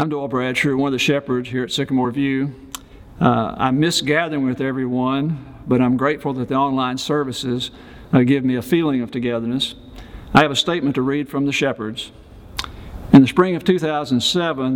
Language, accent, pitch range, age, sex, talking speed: English, American, 120-140 Hz, 50-69, male, 185 wpm